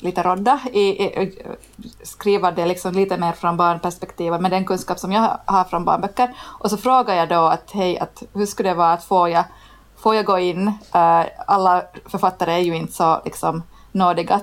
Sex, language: female, English